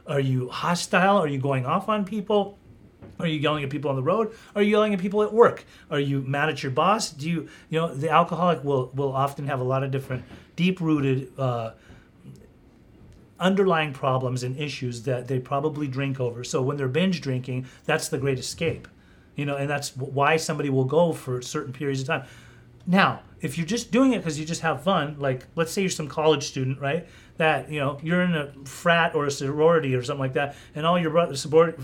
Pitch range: 135-180 Hz